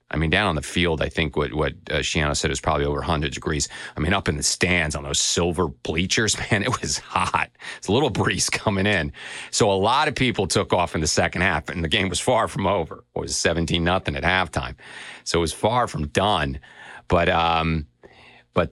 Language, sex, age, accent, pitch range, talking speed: English, male, 40-59, American, 75-95 Hz, 225 wpm